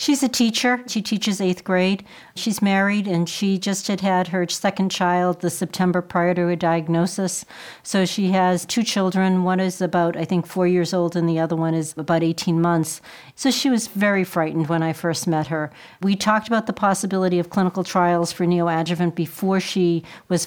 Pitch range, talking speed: 170-200 Hz, 195 wpm